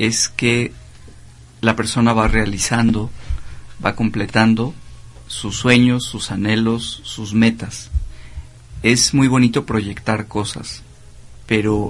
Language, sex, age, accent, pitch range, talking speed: Spanish, male, 50-69, Mexican, 105-120 Hz, 100 wpm